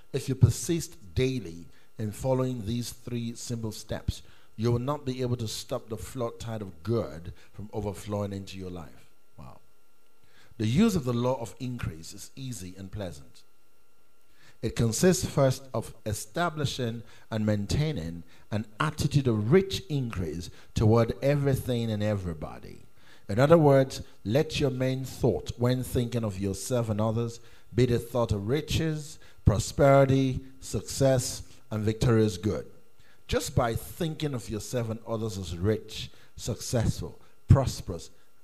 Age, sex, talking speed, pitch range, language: 50-69, male, 140 wpm, 105-130 Hz, English